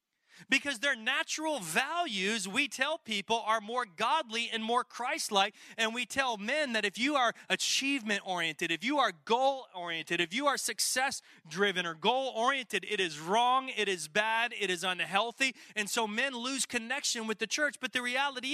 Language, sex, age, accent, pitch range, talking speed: English, male, 30-49, American, 200-265 Hz, 170 wpm